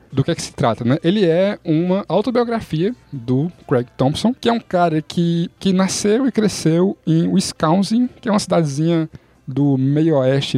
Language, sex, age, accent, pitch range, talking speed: Portuguese, male, 10-29, Brazilian, 130-170 Hz, 180 wpm